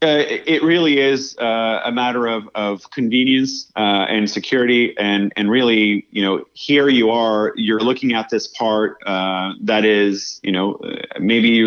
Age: 30-49